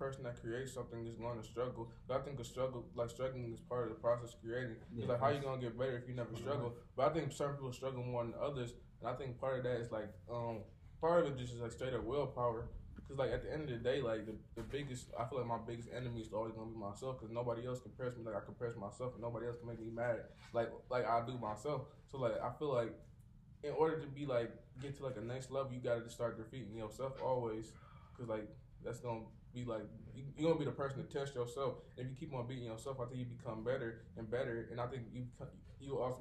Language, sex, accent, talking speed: English, male, American, 270 wpm